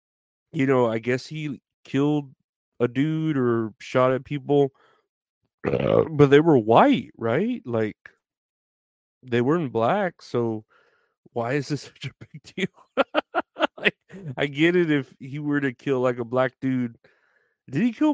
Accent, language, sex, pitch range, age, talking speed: American, English, male, 115-135 Hz, 30-49, 150 wpm